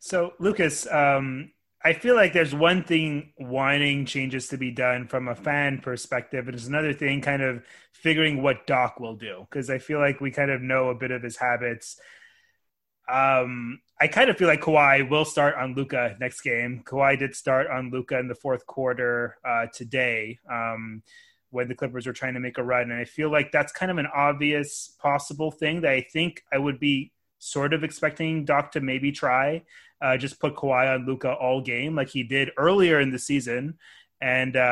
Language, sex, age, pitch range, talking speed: English, male, 30-49, 125-150 Hz, 200 wpm